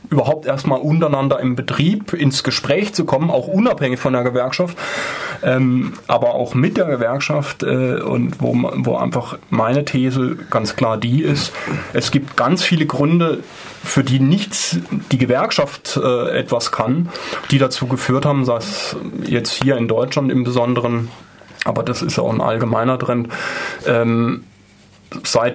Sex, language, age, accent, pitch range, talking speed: male, German, 30-49, German, 120-145 Hz, 150 wpm